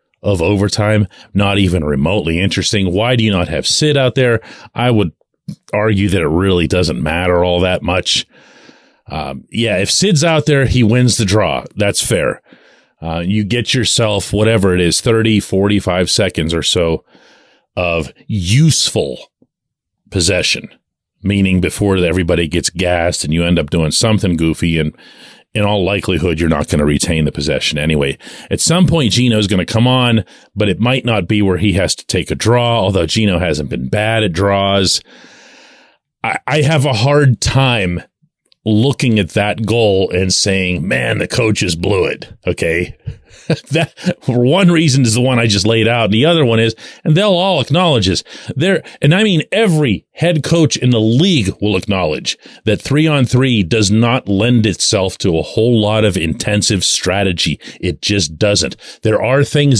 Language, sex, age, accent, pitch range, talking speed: English, male, 40-59, American, 90-125 Hz, 175 wpm